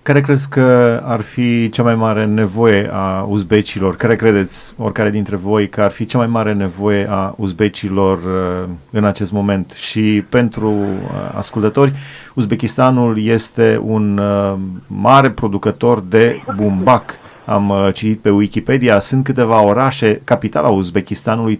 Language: Romanian